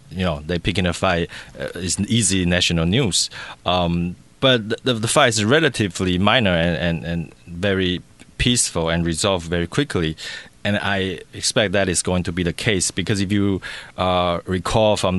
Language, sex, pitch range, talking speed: English, male, 85-105 Hz, 180 wpm